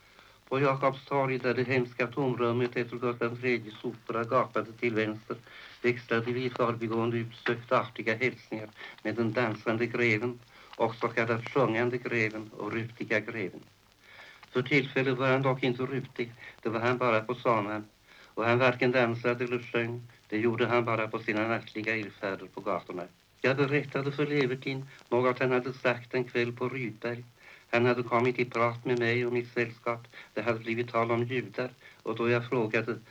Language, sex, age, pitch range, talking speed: Swedish, male, 60-79, 115-130 Hz, 165 wpm